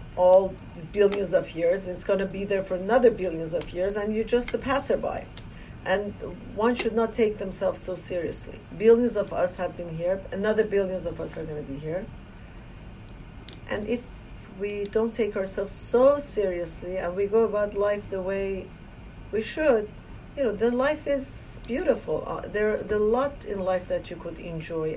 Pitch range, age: 170-210 Hz, 50-69